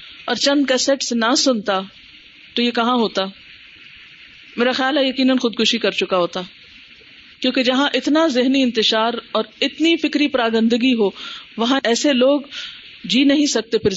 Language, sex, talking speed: Urdu, female, 145 wpm